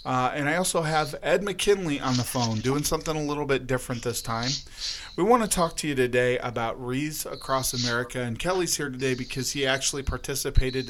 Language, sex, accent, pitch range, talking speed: English, male, American, 115-130 Hz, 205 wpm